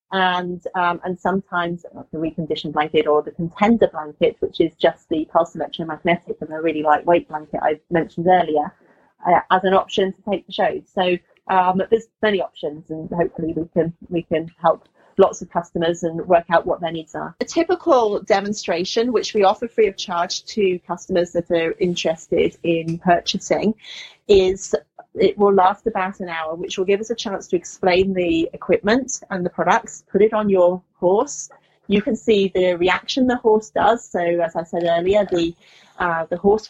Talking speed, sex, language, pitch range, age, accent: 185 wpm, female, English, 170-205 Hz, 30-49, British